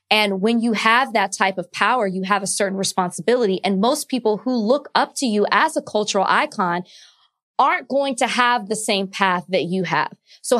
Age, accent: 20-39, American